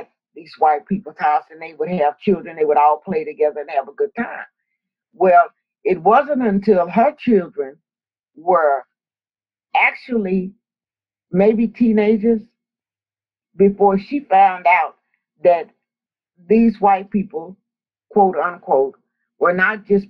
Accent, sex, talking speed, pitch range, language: American, female, 120 wpm, 165-225 Hz, English